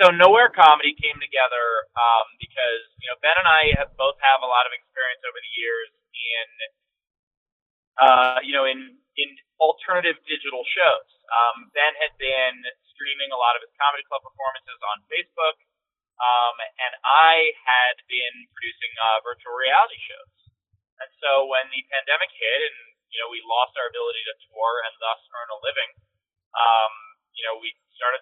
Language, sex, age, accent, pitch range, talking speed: English, male, 20-39, American, 120-180 Hz, 170 wpm